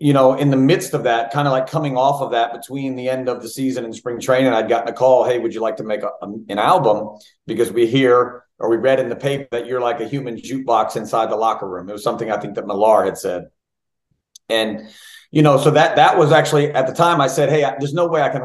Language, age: English, 40-59